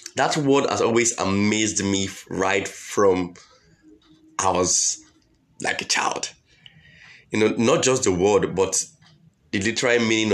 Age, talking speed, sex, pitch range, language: 20-39, 135 wpm, male, 100-125 Hz, English